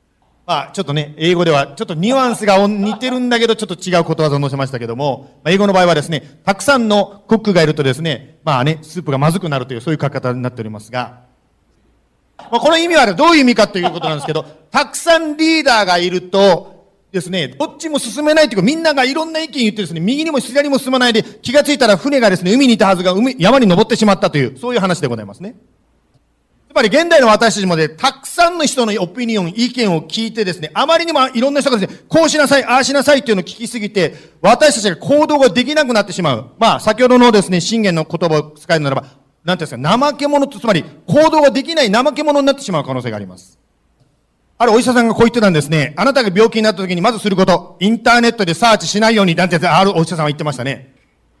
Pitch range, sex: 160-255 Hz, male